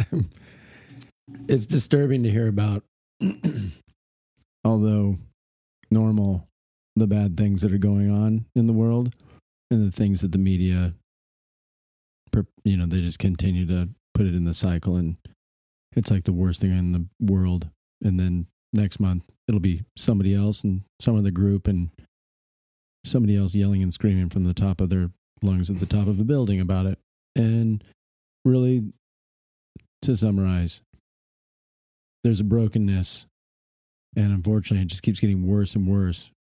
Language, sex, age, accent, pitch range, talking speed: English, male, 40-59, American, 90-110 Hz, 150 wpm